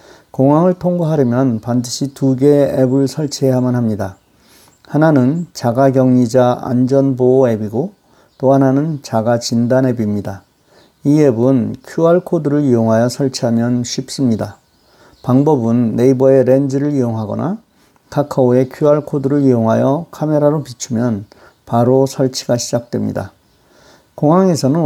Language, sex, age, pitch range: Korean, male, 40-59, 120-140 Hz